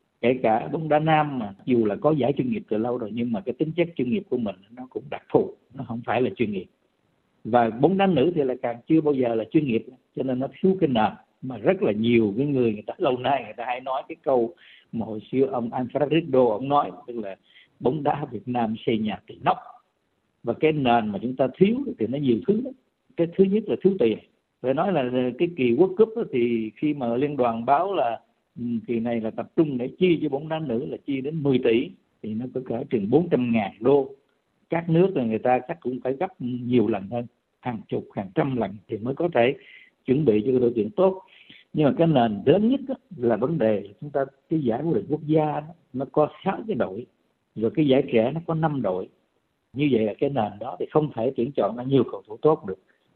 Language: Vietnamese